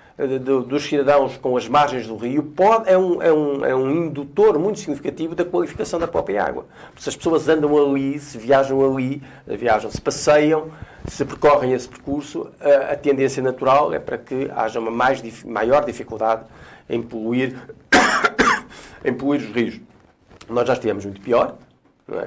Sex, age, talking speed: male, 50-69, 165 wpm